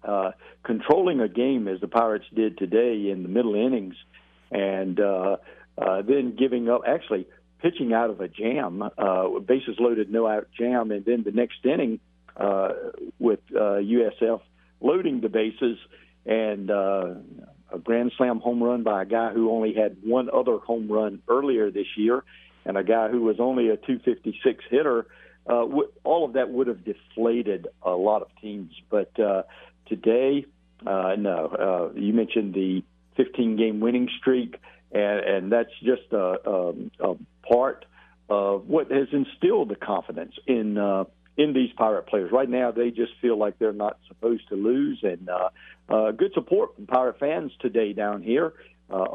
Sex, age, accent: male, 50-69, American